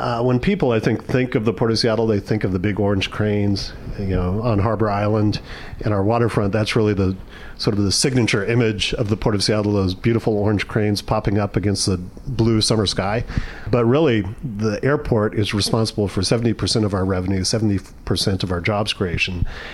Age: 40-59